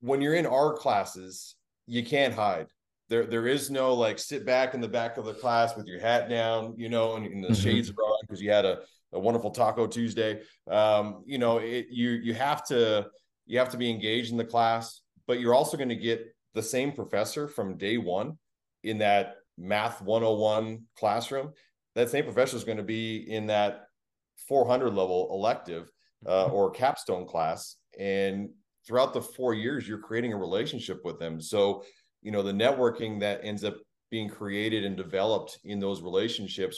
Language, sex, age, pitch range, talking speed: English, male, 30-49, 100-120 Hz, 190 wpm